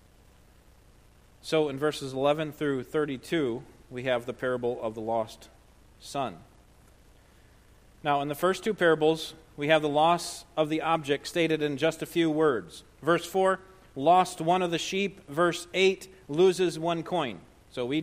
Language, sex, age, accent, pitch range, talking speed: English, male, 40-59, American, 110-175 Hz, 155 wpm